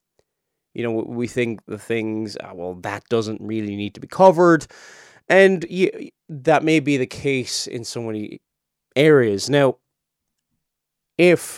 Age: 30-49